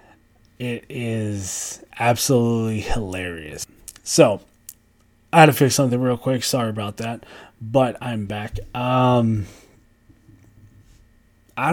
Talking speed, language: 100 wpm, English